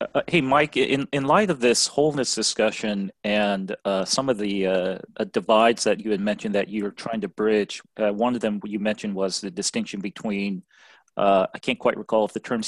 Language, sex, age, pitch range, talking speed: English, male, 30-49, 100-115 Hz, 210 wpm